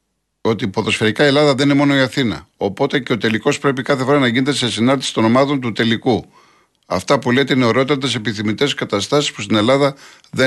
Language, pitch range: Greek, 115-140 Hz